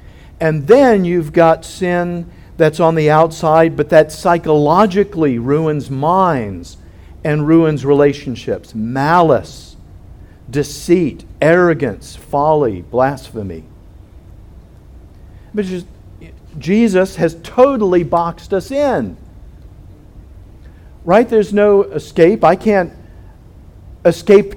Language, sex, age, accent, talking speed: English, male, 50-69, American, 85 wpm